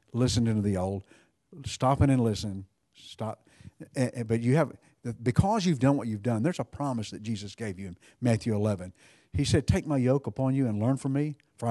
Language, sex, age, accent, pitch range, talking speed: English, male, 50-69, American, 110-140 Hz, 200 wpm